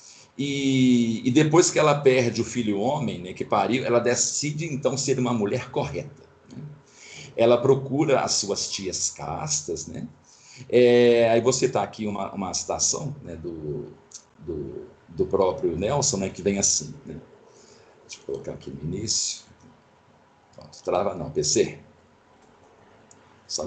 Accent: Brazilian